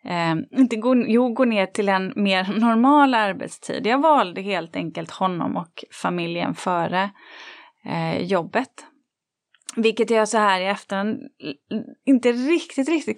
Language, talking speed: Swedish, 135 wpm